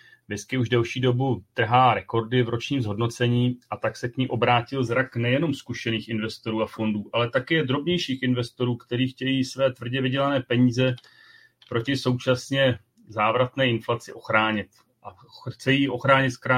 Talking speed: 140 wpm